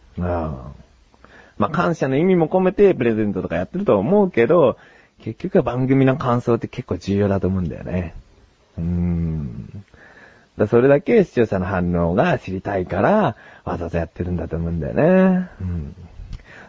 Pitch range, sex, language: 90-125 Hz, male, Japanese